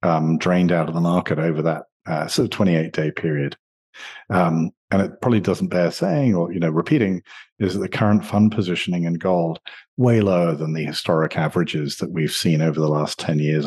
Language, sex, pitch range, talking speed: English, male, 85-105 Hz, 210 wpm